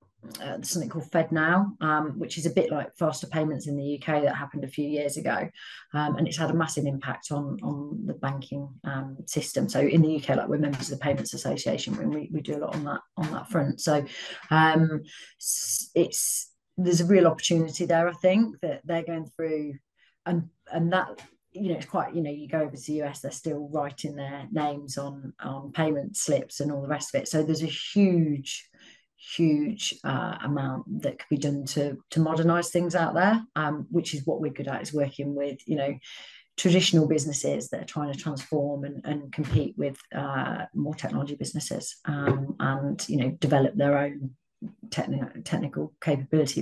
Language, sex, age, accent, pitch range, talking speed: English, female, 30-49, British, 140-165 Hz, 195 wpm